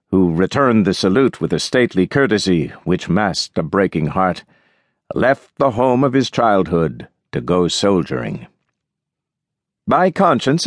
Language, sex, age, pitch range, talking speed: English, male, 60-79, 95-125 Hz, 135 wpm